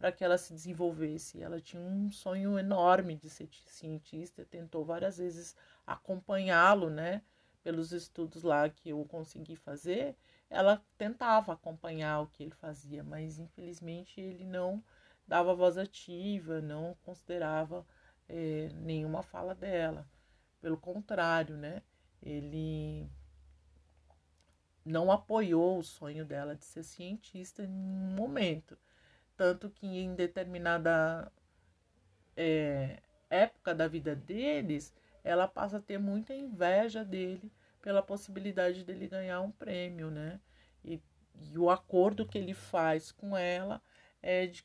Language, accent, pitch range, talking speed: Portuguese, Brazilian, 160-190 Hz, 125 wpm